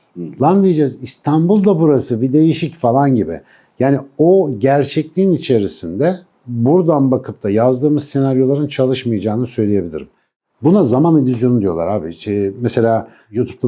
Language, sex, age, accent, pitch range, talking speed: Turkish, male, 60-79, native, 115-150 Hz, 120 wpm